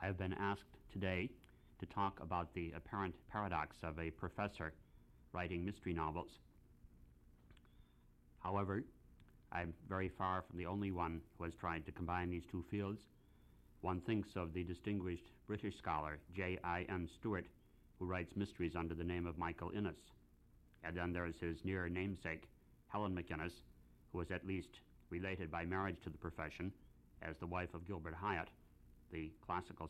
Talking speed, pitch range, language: 160 wpm, 80-95 Hz, English